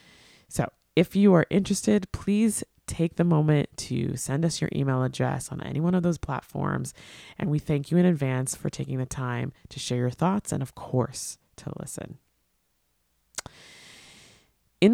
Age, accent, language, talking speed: 20-39, American, English, 165 wpm